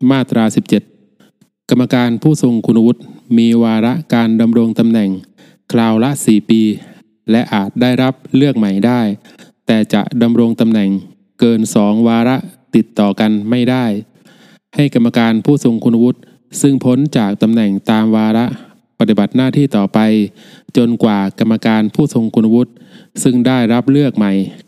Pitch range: 110-130 Hz